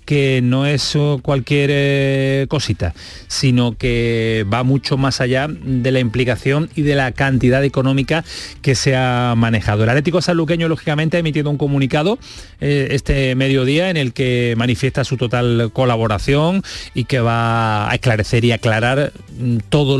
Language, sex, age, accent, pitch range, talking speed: Spanish, male, 30-49, Spanish, 115-145 Hz, 150 wpm